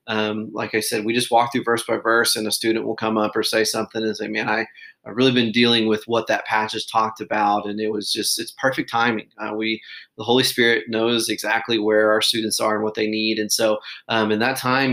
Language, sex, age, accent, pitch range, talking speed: English, male, 30-49, American, 110-120 Hz, 255 wpm